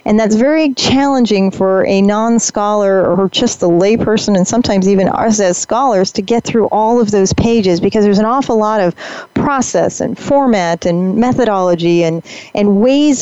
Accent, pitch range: American, 190-245 Hz